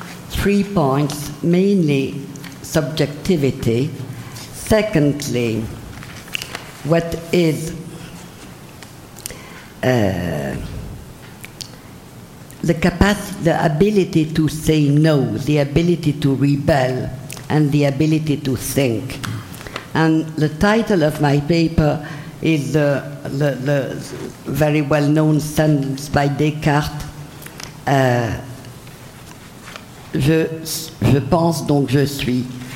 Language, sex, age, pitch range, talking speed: English, female, 50-69, 135-160 Hz, 80 wpm